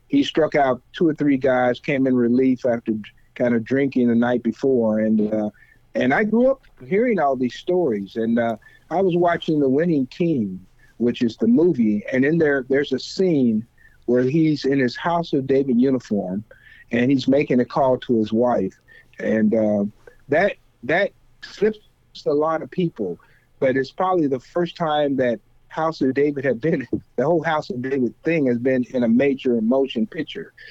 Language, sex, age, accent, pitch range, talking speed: English, male, 50-69, American, 120-155 Hz, 185 wpm